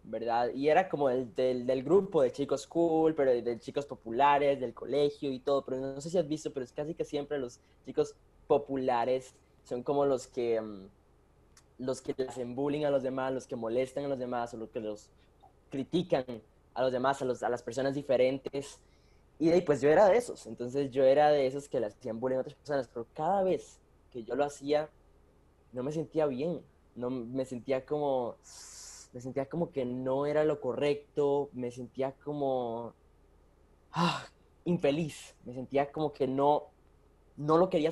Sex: male